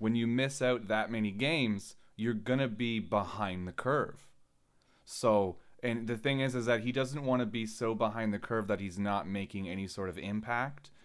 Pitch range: 90-115 Hz